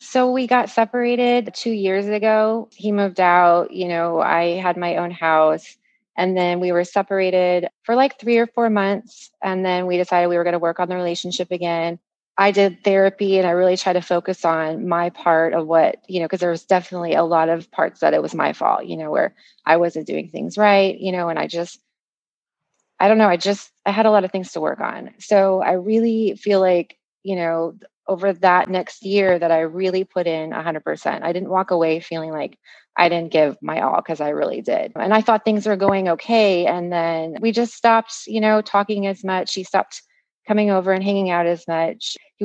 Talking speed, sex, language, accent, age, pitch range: 220 wpm, female, English, American, 30-49, 170-205 Hz